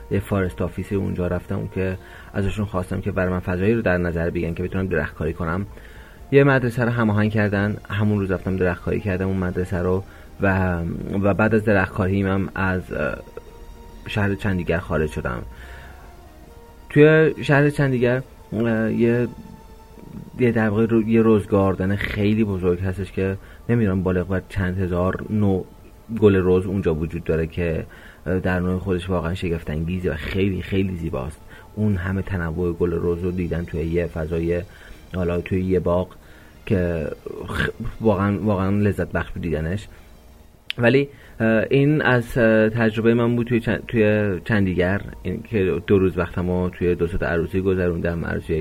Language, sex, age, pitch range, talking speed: Persian, male, 30-49, 85-105 Hz, 145 wpm